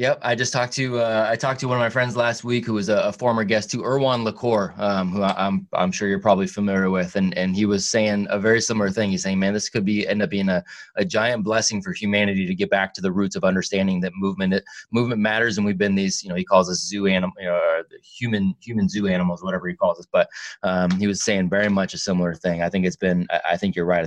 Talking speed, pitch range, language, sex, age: 265 wpm, 95-125 Hz, English, male, 20-39